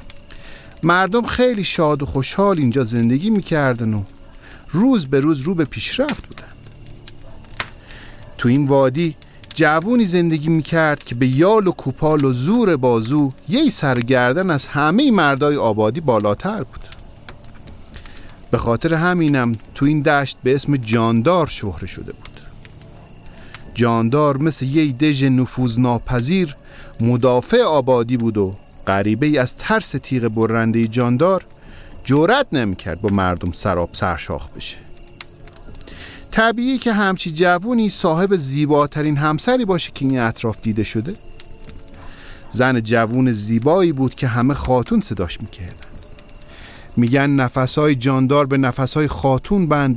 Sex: male